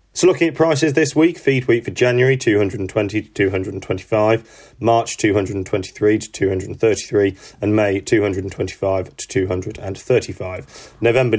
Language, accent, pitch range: English, British, 95-130 Hz